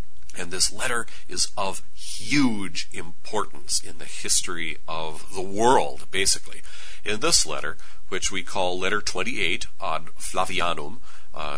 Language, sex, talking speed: English, male, 130 wpm